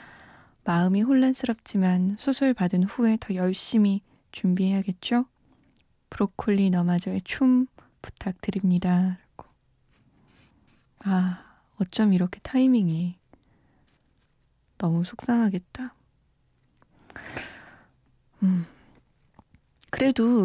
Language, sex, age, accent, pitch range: Korean, female, 20-39, native, 185-250 Hz